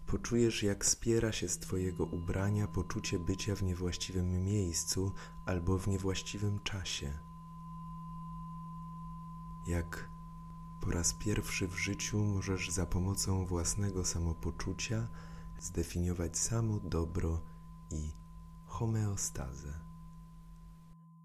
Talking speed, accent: 90 wpm, native